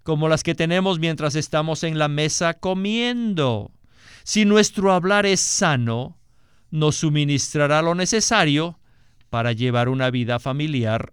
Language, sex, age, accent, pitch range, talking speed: Spanish, male, 50-69, Mexican, 135-180 Hz, 130 wpm